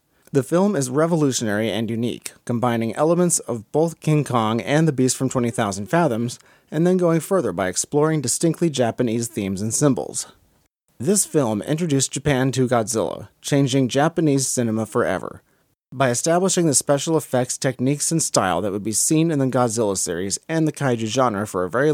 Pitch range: 115-155 Hz